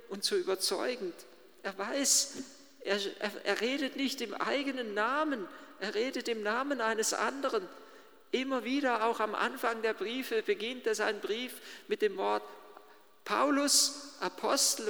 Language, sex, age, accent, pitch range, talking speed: German, male, 50-69, German, 210-350 Hz, 135 wpm